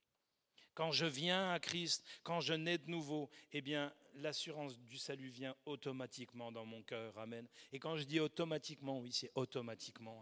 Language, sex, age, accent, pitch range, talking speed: French, male, 40-59, French, 145-170 Hz, 170 wpm